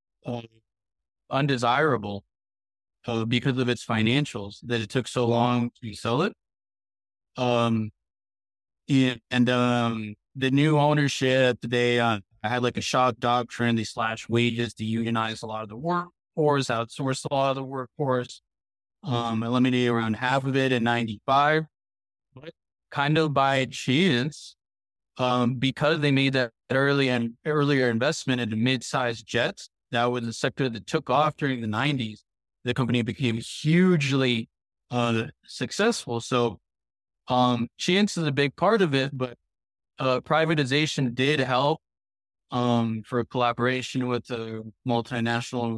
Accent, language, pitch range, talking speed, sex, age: American, English, 115-135 Hz, 145 wpm, male, 20-39